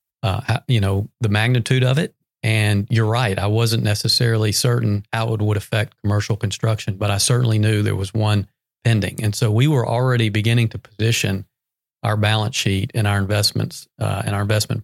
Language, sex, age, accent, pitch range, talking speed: English, male, 40-59, American, 105-120 Hz, 185 wpm